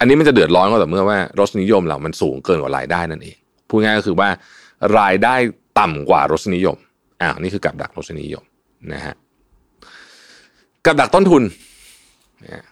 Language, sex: Thai, male